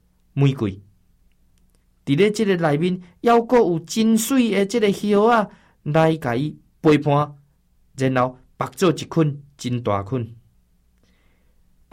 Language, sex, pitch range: Chinese, male, 115-180 Hz